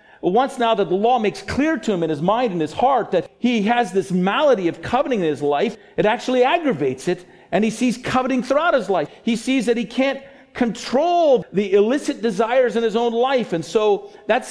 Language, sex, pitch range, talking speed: English, male, 140-230 Hz, 215 wpm